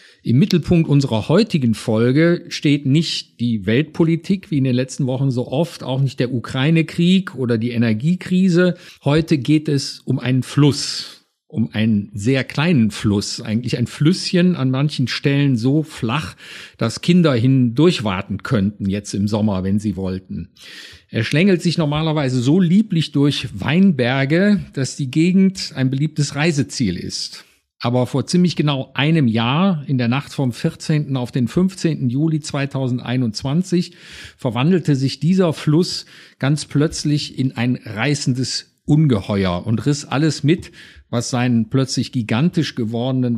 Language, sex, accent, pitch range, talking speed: German, male, German, 120-160 Hz, 140 wpm